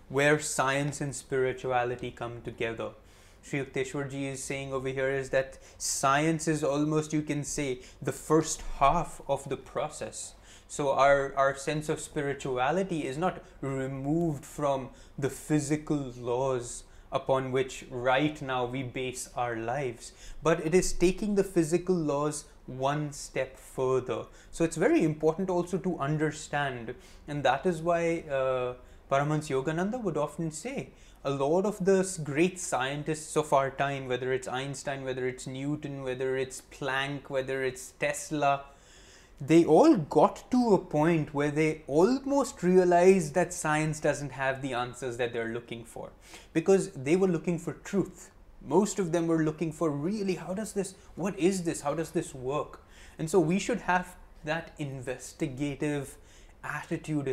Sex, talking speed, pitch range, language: male, 155 wpm, 135-165 Hz, English